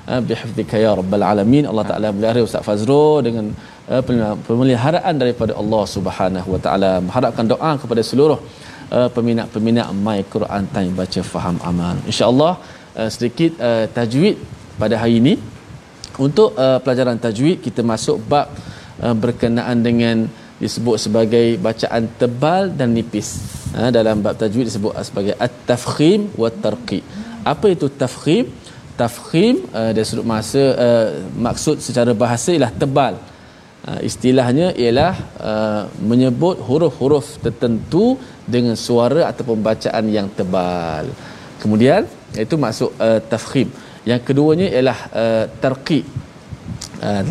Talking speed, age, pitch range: 120 wpm, 20-39, 110-135 Hz